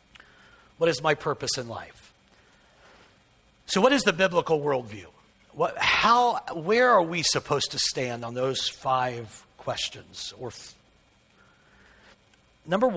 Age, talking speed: 60-79, 105 wpm